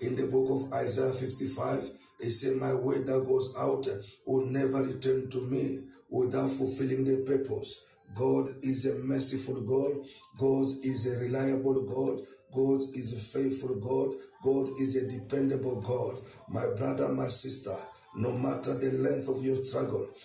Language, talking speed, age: English, 155 wpm, 50-69